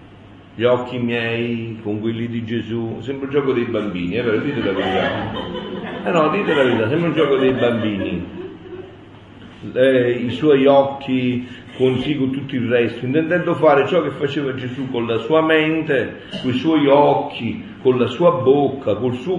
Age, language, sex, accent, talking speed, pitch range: 50-69, Italian, male, native, 180 wpm, 115-160 Hz